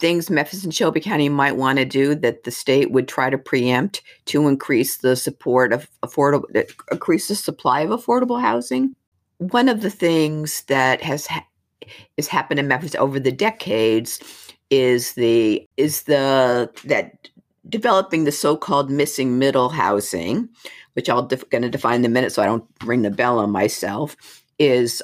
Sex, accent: female, American